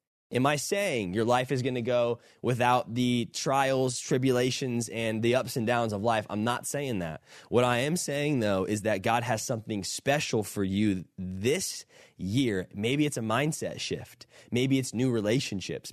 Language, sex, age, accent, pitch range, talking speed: English, male, 20-39, American, 105-130 Hz, 180 wpm